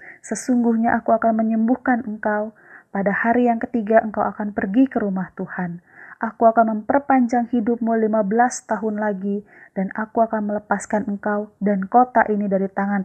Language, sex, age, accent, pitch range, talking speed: Indonesian, female, 20-39, native, 195-230 Hz, 145 wpm